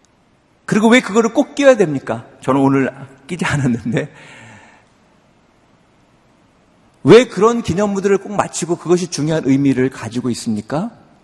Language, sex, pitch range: Korean, male, 130-200 Hz